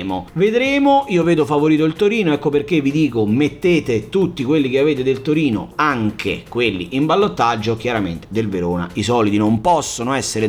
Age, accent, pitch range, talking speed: 30-49, native, 115-170 Hz, 165 wpm